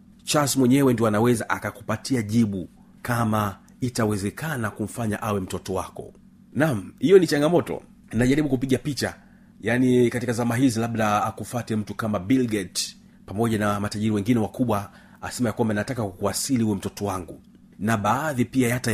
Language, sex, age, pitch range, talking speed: Swahili, male, 40-59, 105-130 Hz, 145 wpm